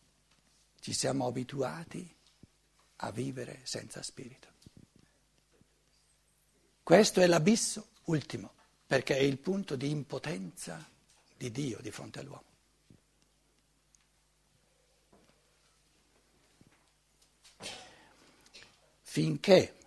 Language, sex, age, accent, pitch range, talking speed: Italian, male, 60-79, native, 160-245 Hz, 70 wpm